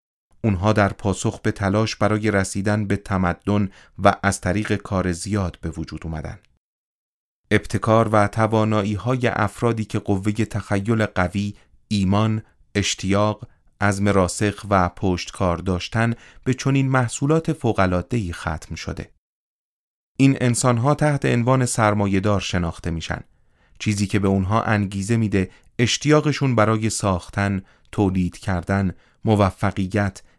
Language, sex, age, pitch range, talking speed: Persian, male, 30-49, 95-115 Hz, 115 wpm